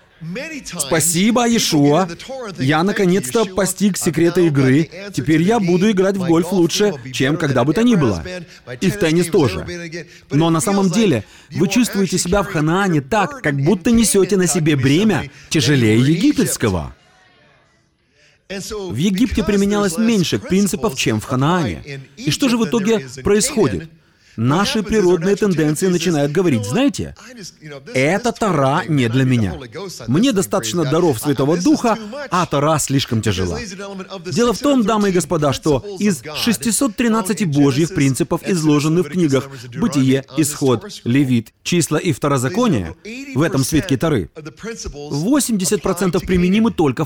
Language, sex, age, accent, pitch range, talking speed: Russian, male, 30-49, native, 145-205 Hz, 130 wpm